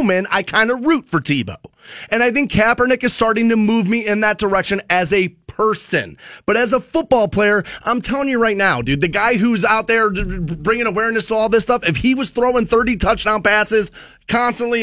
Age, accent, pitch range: 30-49, American, 190-250 Hz